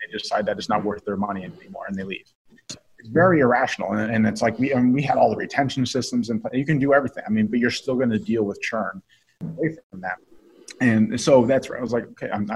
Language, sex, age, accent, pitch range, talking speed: English, male, 30-49, American, 105-120 Hz, 250 wpm